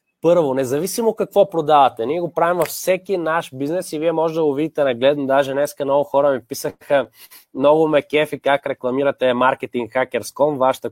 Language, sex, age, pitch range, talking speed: Bulgarian, male, 20-39, 130-165 Hz, 175 wpm